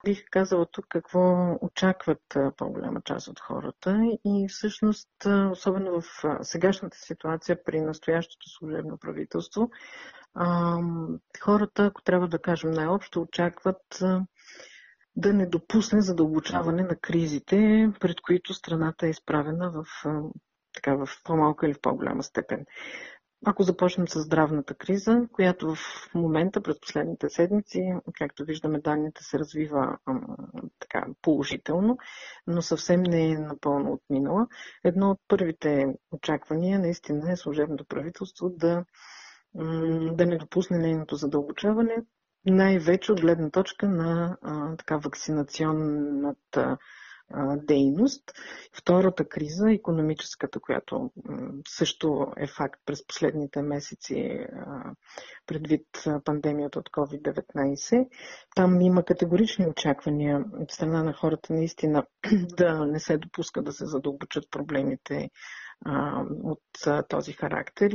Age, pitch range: 50-69, 155-190 Hz